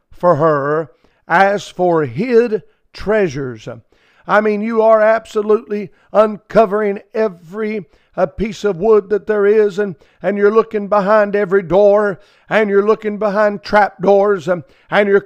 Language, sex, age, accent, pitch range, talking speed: English, male, 50-69, American, 175-220 Hz, 140 wpm